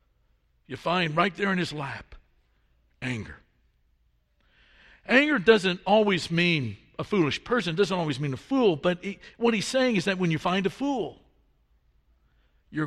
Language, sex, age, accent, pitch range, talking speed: English, male, 60-79, American, 160-215 Hz, 155 wpm